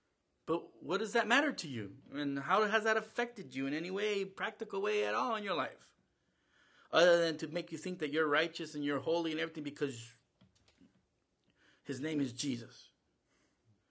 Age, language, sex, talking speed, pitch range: 50-69, English, male, 180 wpm, 135-195 Hz